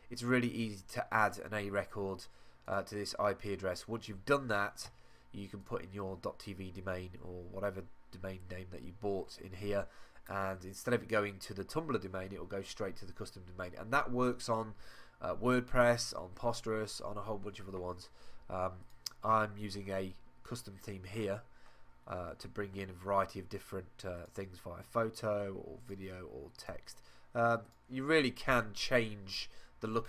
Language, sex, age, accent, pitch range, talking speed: English, male, 20-39, British, 95-110 Hz, 190 wpm